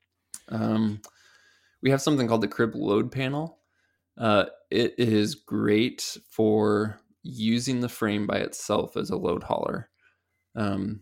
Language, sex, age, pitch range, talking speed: English, male, 20-39, 100-115 Hz, 130 wpm